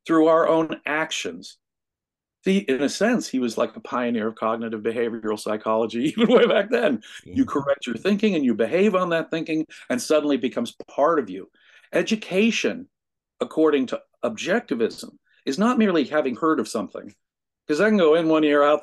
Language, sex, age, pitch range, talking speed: English, male, 50-69, 125-205 Hz, 180 wpm